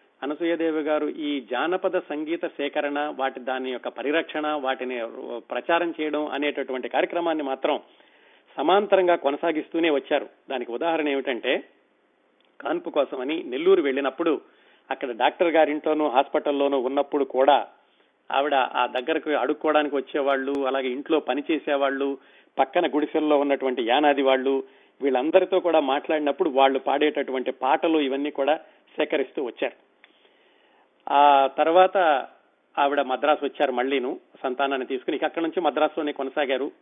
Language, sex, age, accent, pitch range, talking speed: Telugu, male, 40-59, native, 140-170 Hz, 110 wpm